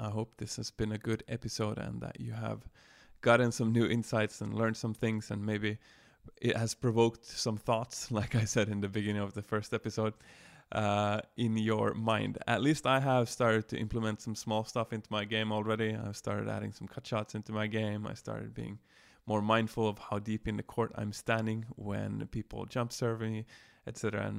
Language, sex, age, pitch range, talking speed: English, male, 20-39, 105-125 Hz, 205 wpm